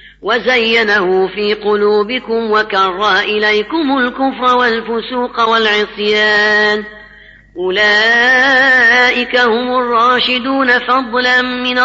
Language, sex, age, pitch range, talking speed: Arabic, female, 30-49, 210-250 Hz, 65 wpm